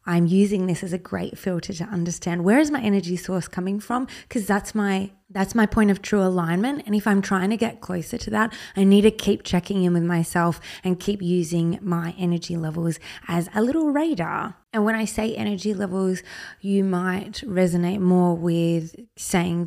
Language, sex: English, female